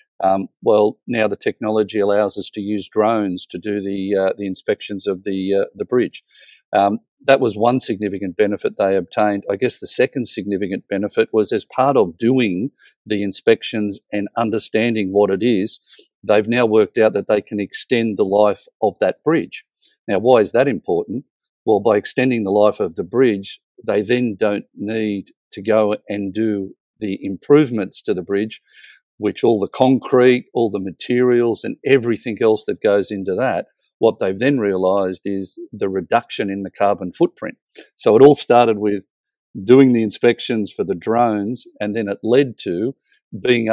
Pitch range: 100-115 Hz